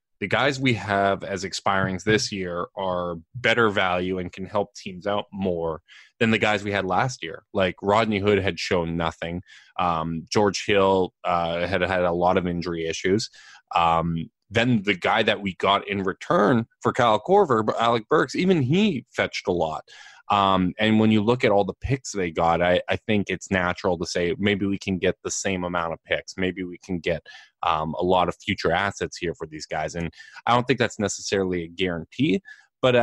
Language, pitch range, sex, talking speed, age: English, 85-110 Hz, male, 200 wpm, 20-39